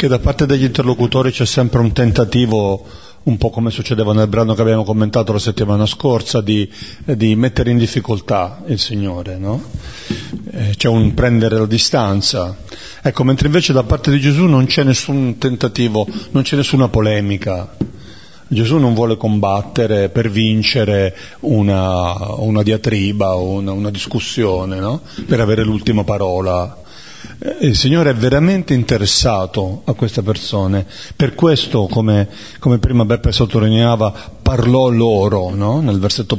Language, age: Italian, 40-59